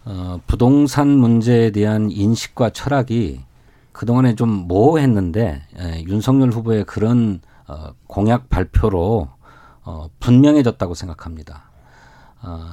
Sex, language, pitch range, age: male, Korean, 105-140 Hz, 40-59